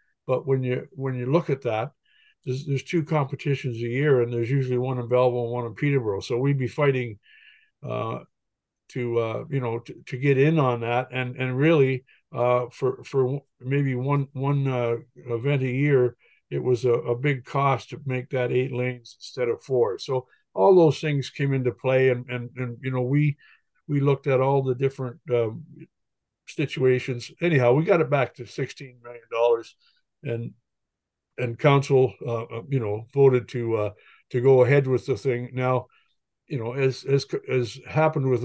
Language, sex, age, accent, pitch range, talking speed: English, male, 60-79, American, 120-140 Hz, 185 wpm